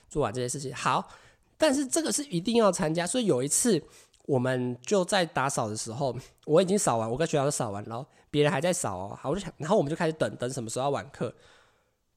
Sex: male